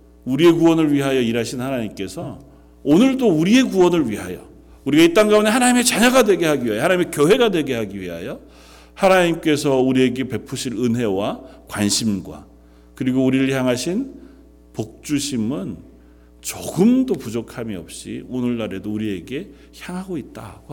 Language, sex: Korean, male